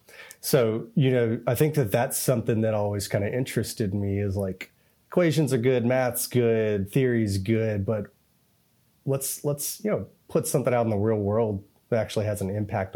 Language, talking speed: English, 185 wpm